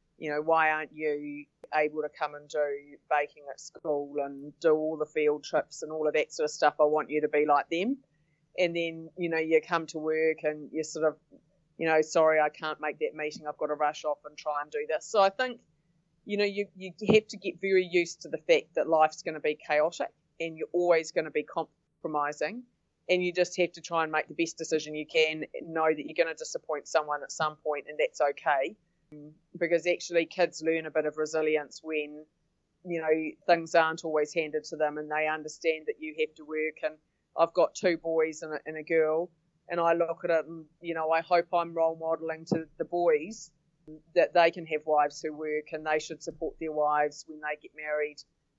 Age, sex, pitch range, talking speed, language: 30-49, female, 150-170 Hz, 230 wpm, English